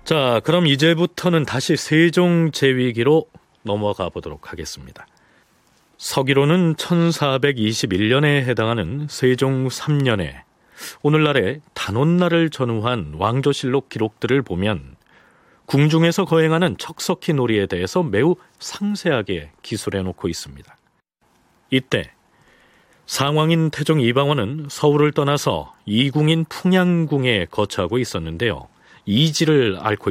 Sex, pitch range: male, 110-160 Hz